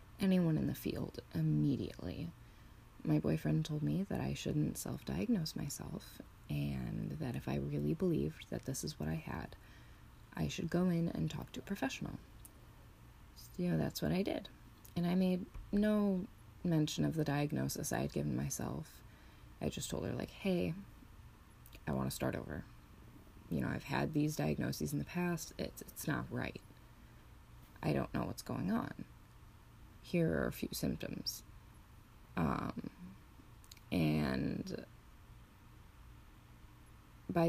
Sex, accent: female, American